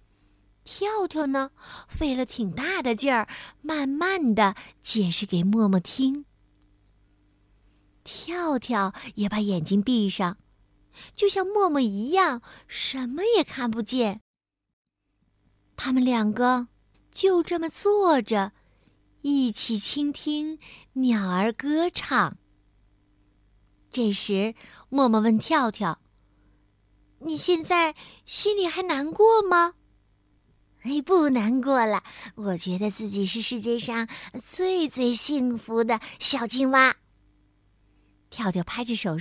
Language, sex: Chinese, female